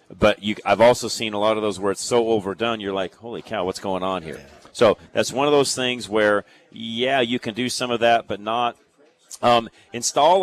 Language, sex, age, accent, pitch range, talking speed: English, male, 40-59, American, 105-135 Hz, 220 wpm